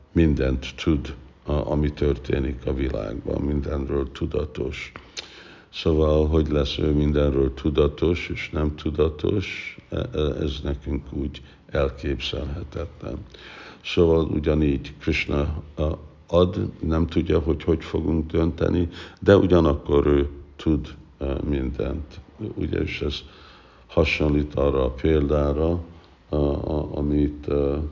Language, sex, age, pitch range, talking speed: Hungarian, male, 60-79, 70-80 Hz, 95 wpm